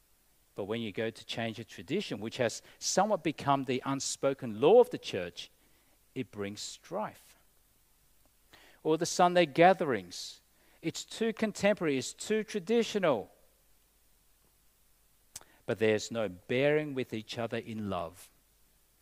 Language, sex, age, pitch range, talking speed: English, male, 50-69, 115-175 Hz, 125 wpm